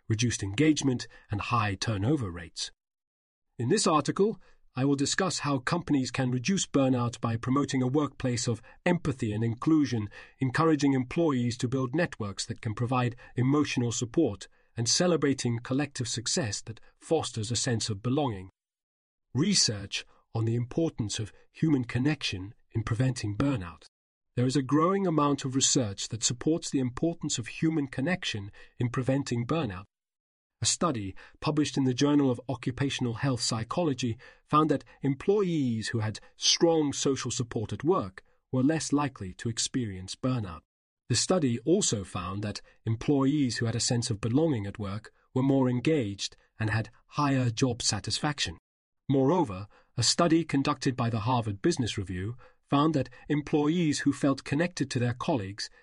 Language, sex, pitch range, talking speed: English, male, 115-145 Hz, 150 wpm